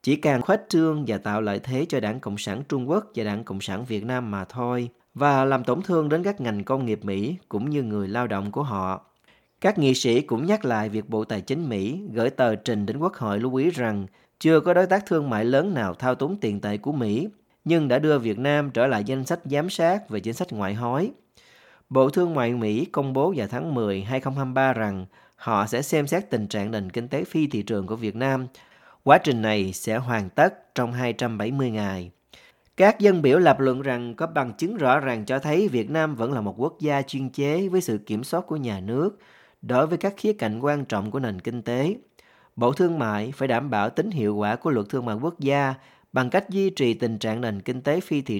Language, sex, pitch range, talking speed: Vietnamese, male, 105-145 Hz, 235 wpm